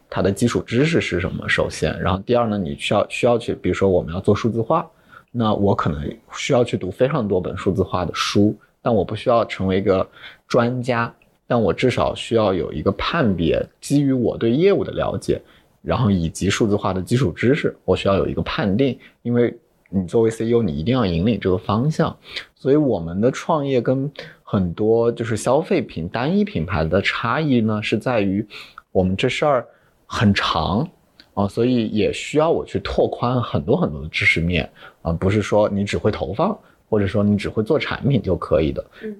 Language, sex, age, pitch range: Chinese, male, 20-39, 95-120 Hz